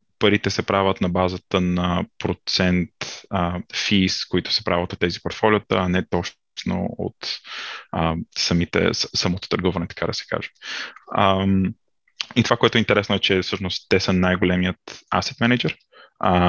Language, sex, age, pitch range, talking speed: Bulgarian, male, 20-39, 90-105 Hz, 145 wpm